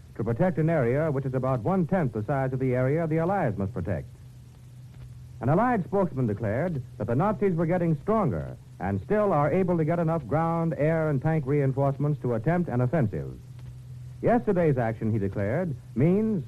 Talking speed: 175 wpm